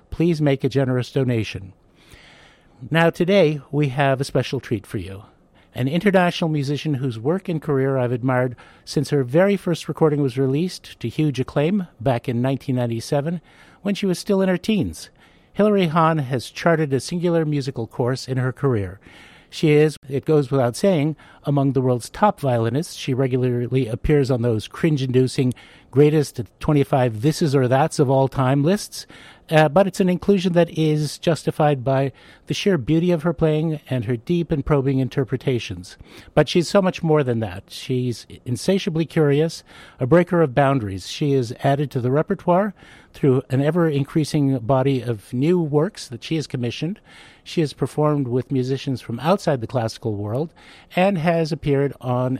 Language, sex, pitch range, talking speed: English, male, 130-165 Hz, 165 wpm